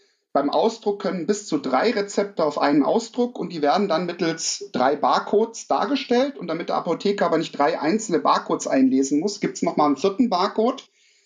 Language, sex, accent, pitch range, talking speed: German, male, German, 180-260 Hz, 185 wpm